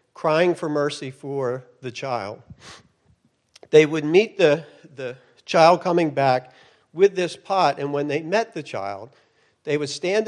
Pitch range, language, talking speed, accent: 140-195 Hz, English, 150 wpm, American